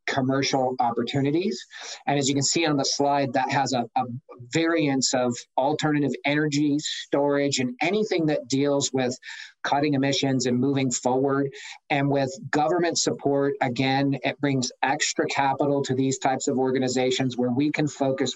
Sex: male